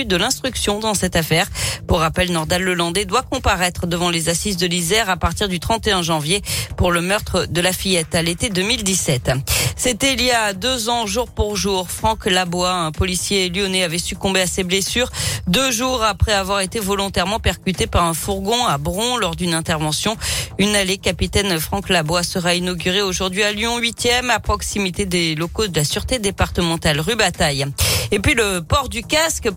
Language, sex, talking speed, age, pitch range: French, female, 185 wpm, 40-59, 175-235 Hz